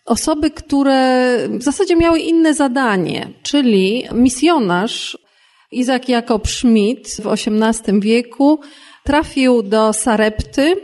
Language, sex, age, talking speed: Polish, female, 30-49, 100 wpm